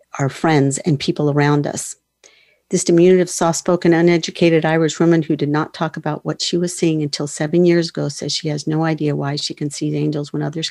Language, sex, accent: English, female, American